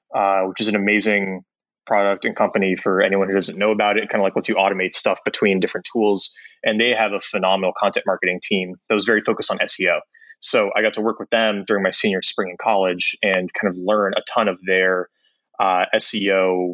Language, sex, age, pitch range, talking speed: English, male, 20-39, 95-110 Hz, 225 wpm